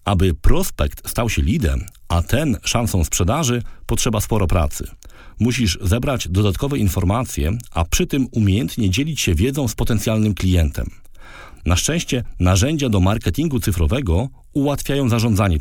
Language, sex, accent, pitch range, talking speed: Polish, male, native, 90-125 Hz, 130 wpm